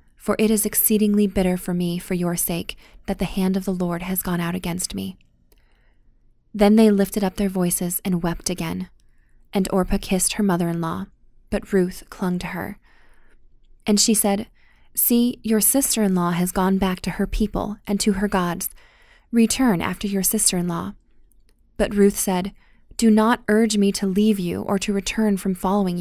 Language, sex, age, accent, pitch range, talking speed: English, female, 20-39, American, 180-210 Hz, 175 wpm